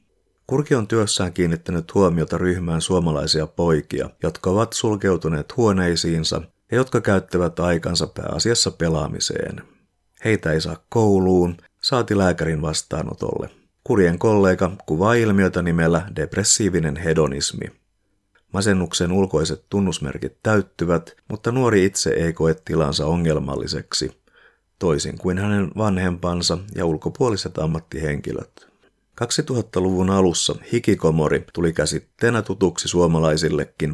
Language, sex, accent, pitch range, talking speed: Finnish, male, native, 80-105 Hz, 100 wpm